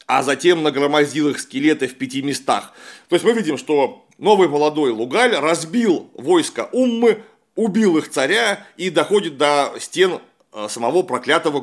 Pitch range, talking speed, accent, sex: 145-220 Hz, 145 wpm, native, male